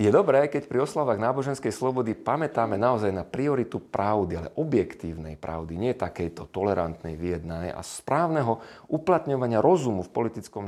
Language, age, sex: Slovak, 40-59, male